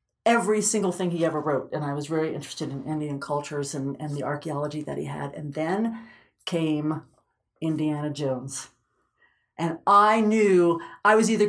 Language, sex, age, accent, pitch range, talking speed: English, female, 50-69, American, 165-230 Hz, 170 wpm